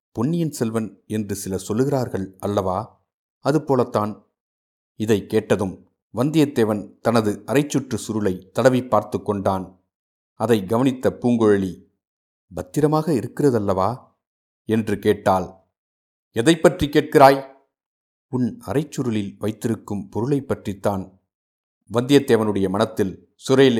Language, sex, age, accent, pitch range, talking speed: Tamil, male, 50-69, native, 100-130 Hz, 85 wpm